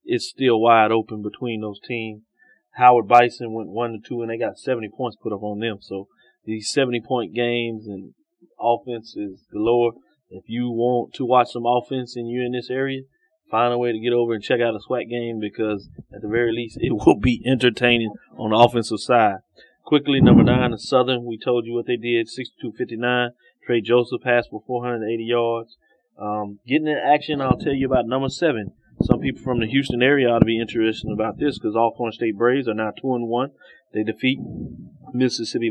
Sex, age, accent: male, 30-49, American